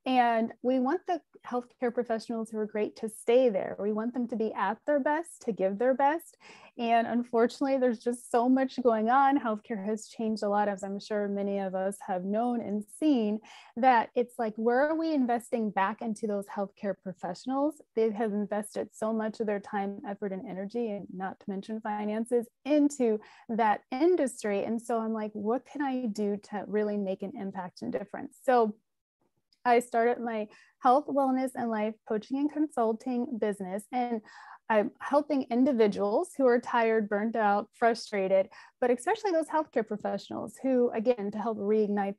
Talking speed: 180 wpm